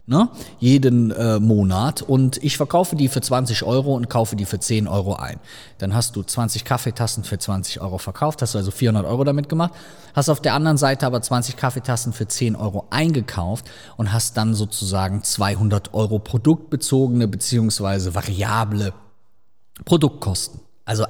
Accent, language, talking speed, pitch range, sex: German, German, 160 wpm, 105-140 Hz, male